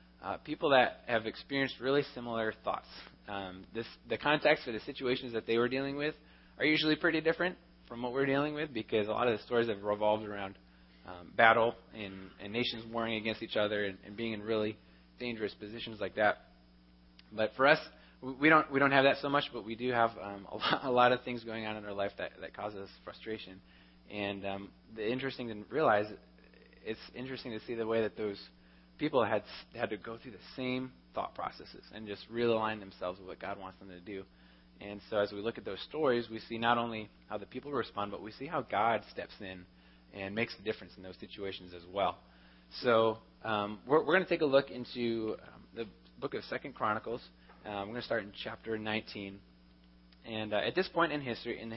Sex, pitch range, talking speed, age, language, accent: male, 95-120 Hz, 220 wpm, 20-39, English, American